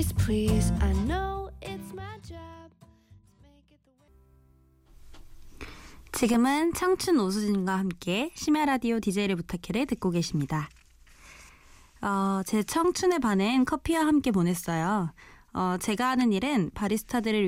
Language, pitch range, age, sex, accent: Korean, 170-245 Hz, 20-39, female, native